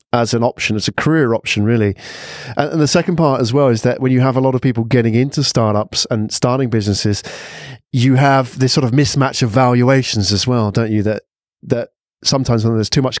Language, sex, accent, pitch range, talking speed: English, male, British, 115-135 Hz, 220 wpm